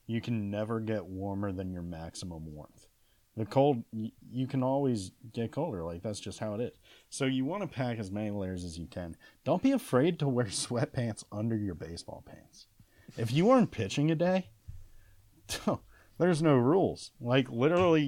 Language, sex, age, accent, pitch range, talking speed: English, male, 30-49, American, 100-130 Hz, 180 wpm